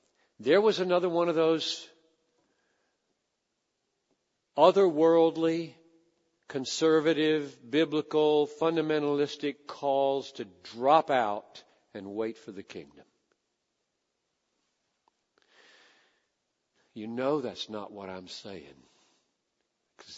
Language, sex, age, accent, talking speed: English, male, 60-79, American, 80 wpm